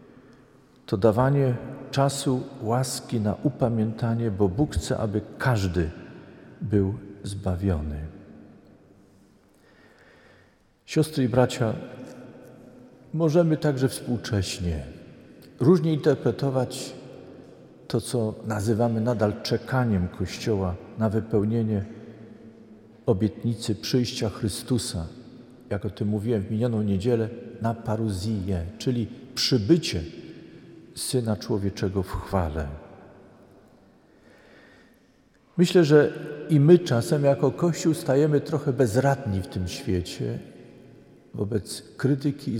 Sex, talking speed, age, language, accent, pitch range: male, 90 wpm, 50-69, Polish, native, 105-135 Hz